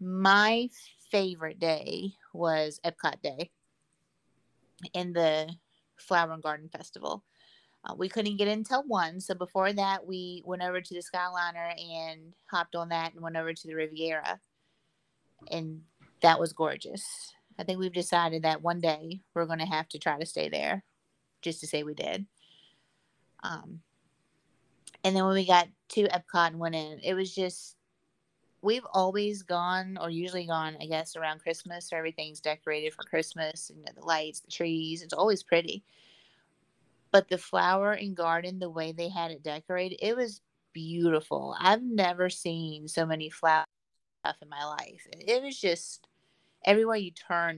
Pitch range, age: 160-185 Hz, 30-49